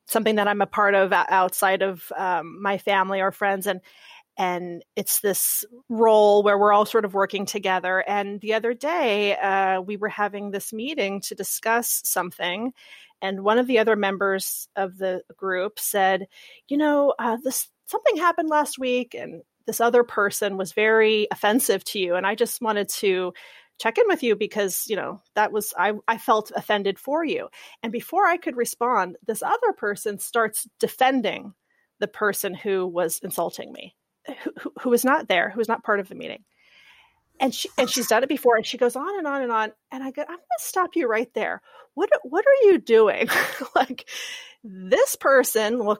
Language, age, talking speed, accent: English, 30-49, 190 wpm, American